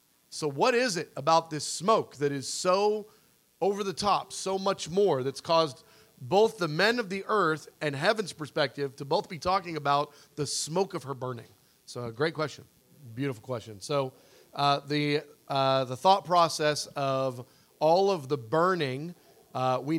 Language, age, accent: English, 40-59, American